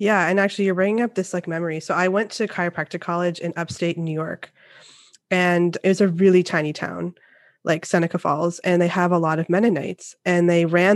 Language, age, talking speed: English, 20-39, 215 wpm